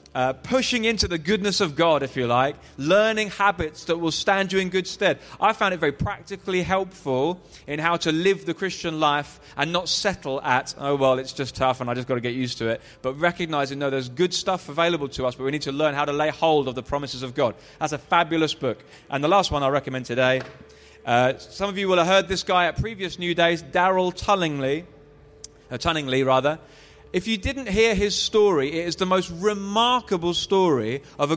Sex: male